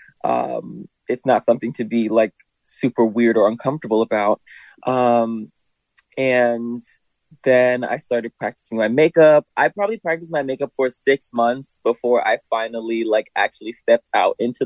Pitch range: 115-155 Hz